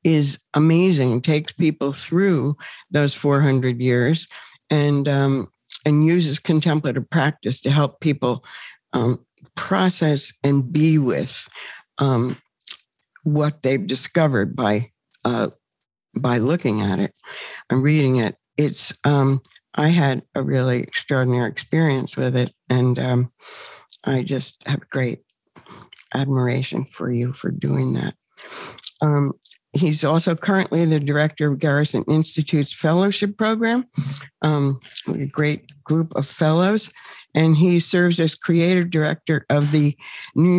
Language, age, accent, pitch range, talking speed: English, 60-79, American, 130-160 Hz, 125 wpm